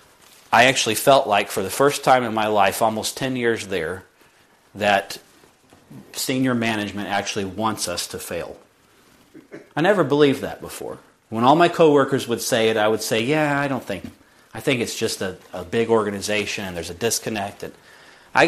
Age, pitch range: 40-59, 100-130 Hz